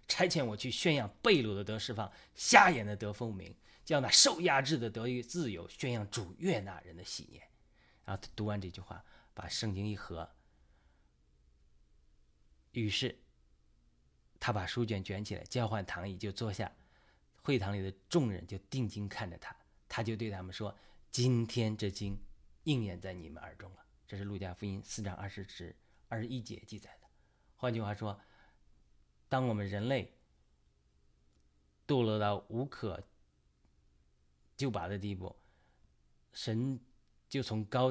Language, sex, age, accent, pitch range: Chinese, male, 30-49, native, 75-110 Hz